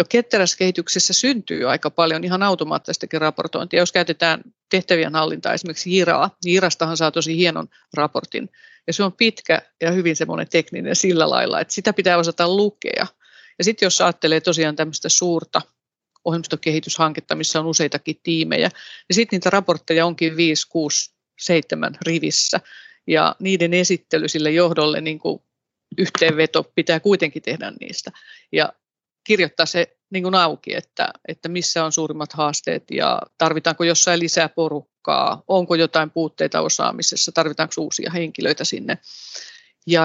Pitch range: 160-185 Hz